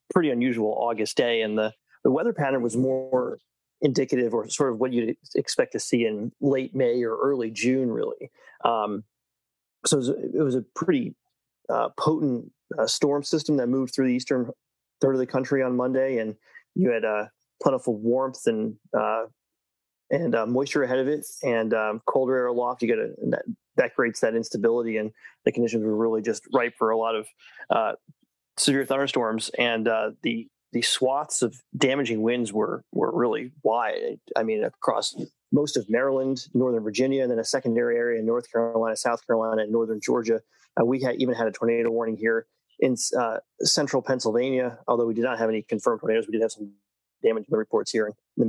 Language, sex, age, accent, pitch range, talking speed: English, male, 30-49, American, 110-130 Hz, 195 wpm